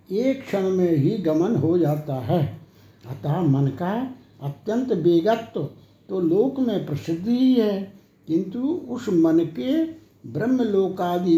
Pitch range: 150-220 Hz